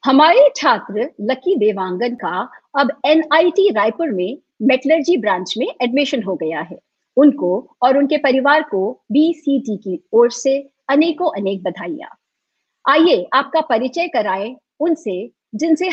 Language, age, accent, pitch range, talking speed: Hindi, 50-69, native, 220-310 Hz, 130 wpm